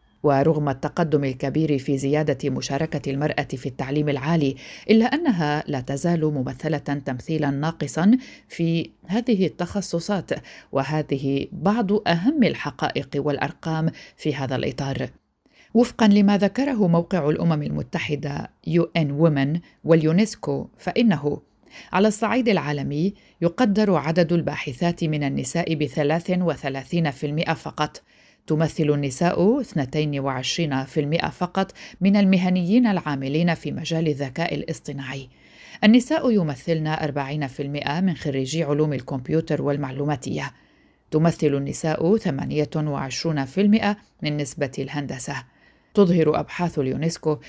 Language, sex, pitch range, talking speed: Arabic, female, 145-180 Hz, 95 wpm